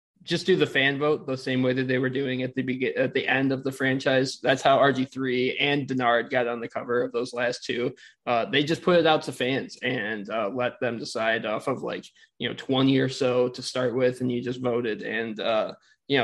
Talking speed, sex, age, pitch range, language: 240 wpm, male, 20-39, 125-145 Hz, English